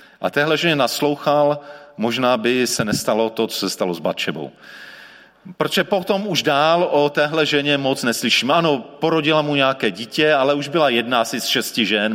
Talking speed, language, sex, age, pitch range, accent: 175 wpm, Czech, male, 40-59, 115-155 Hz, native